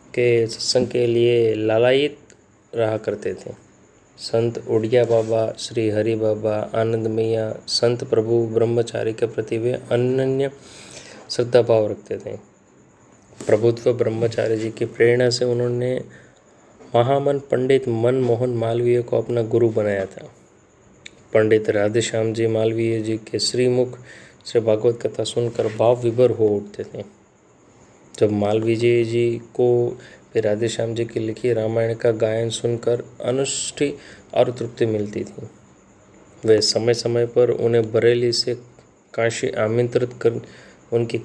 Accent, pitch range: Indian, 110-120 Hz